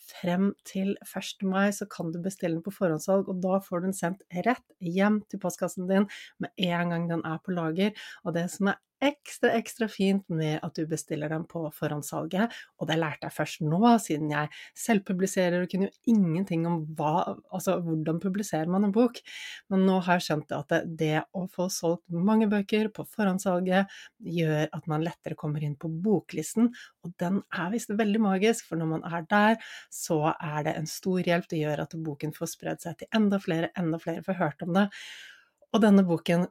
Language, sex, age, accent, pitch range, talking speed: English, female, 30-49, Swedish, 165-200 Hz, 200 wpm